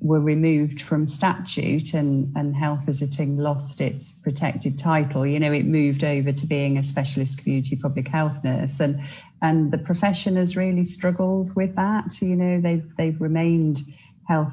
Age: 40-59